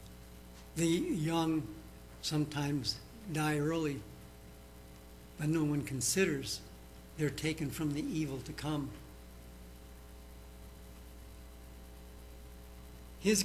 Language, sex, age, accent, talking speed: English, male, 70-89, American, 75 wpm